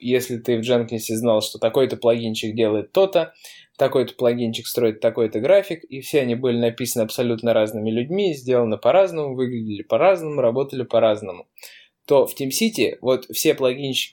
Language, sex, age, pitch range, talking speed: Russian, male, 20-39, 115-135 Hz, 150 wpm